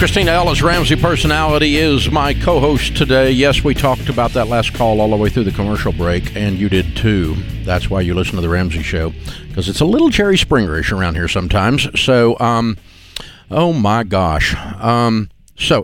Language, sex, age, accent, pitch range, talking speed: English, male, 50-69, American, 85-110 Hz, 190 wpm